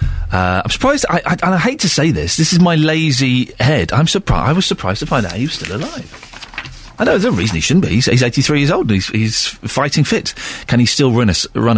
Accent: British